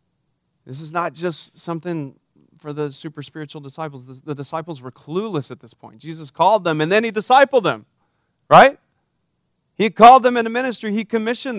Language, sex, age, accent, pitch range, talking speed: English, male, 40-59, American, 145-180 Hz, 175 wpm